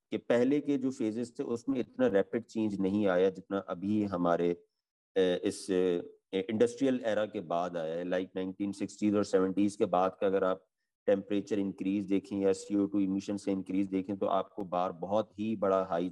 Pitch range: 95-115 Hz